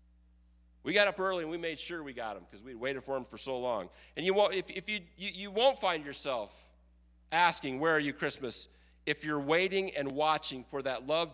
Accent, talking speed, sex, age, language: American, 235 wpm, male, 40-59, English